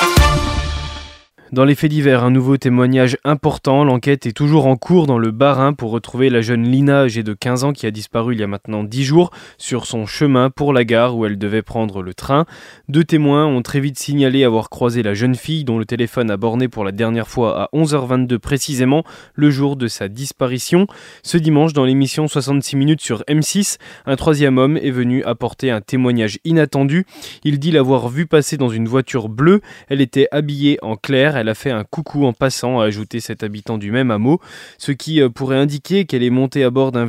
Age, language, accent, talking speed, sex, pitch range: 20-39, French, French, 210 wpm, male, 120-150 Hz